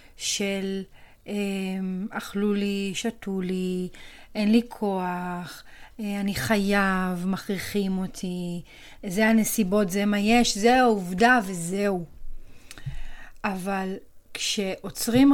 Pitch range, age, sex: 200-245 Hz, 30-49, female